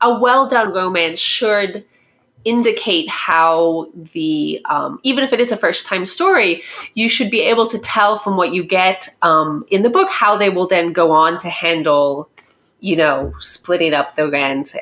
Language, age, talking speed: English, 20-39, 180 wpm